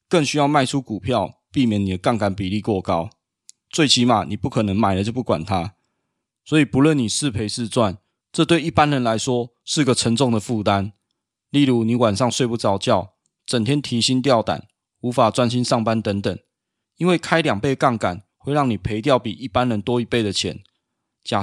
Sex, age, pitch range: male, 20-39, 105-135 Hz